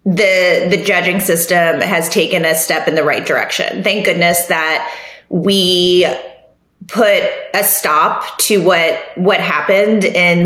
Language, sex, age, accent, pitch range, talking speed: English, female, 20-39, American, 185-245 Hz, 140 wpm